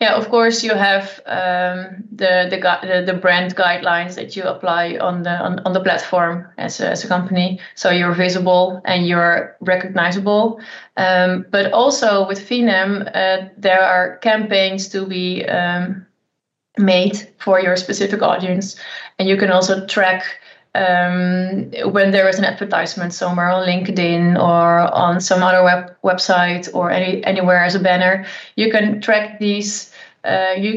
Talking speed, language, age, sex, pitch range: 160 wpm, English, 20-39, female, 180-200 Hz